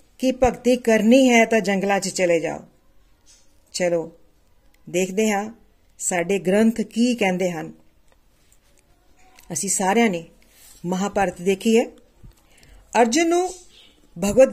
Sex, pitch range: female, 195-250 Hz